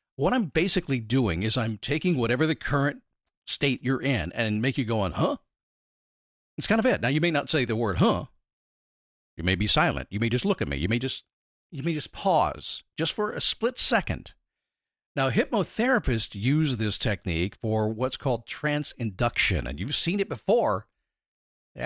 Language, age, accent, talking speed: English, 50-69, American, 190 wpm